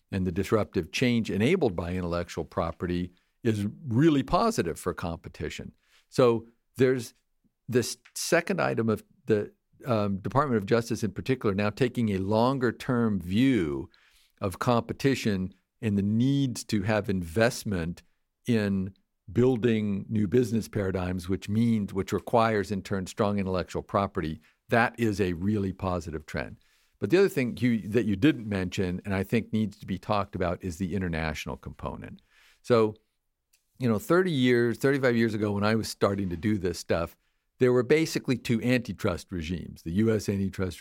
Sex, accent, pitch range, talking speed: male, American, 90-115 Hz, 155 wpm